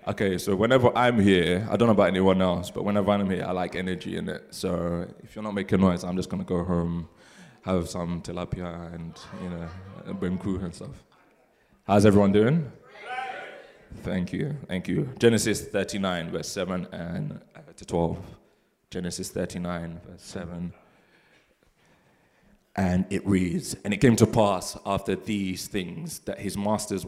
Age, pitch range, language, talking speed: 20-39, 90-100 Hz, English, 160 wpm